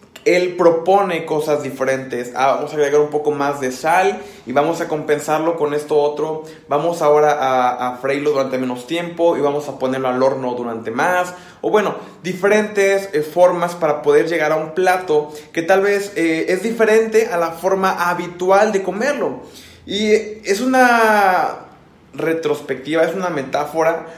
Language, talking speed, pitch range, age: Spanish, 165 wpm, 150-190 Hz, 20-39